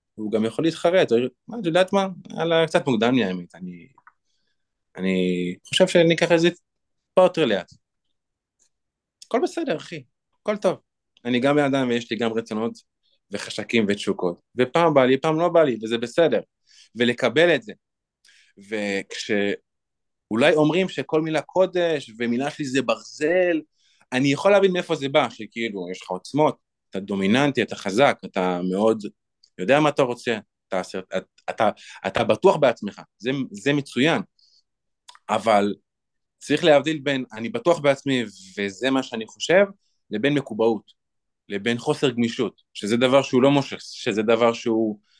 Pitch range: 115-160 Hz